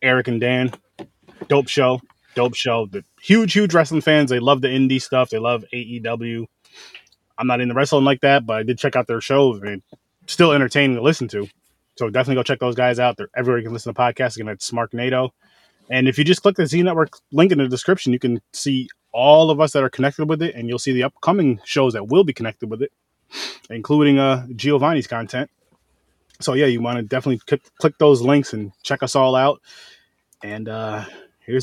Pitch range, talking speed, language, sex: 120-140 Hz, 210 wpm, English, male